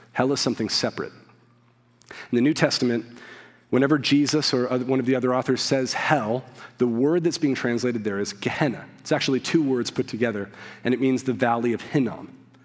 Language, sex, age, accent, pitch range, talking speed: English, male, 40-59, American, 120-135 Hz, 185 wpm